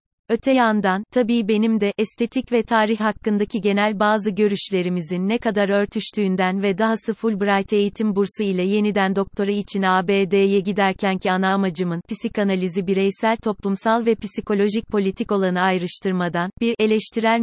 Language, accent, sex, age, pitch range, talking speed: Turkish, native, female, 30-49, 190-215 Hz, 135 wpm